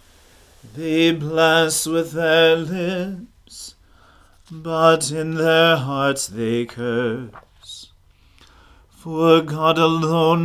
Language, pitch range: English, 120-165 Hz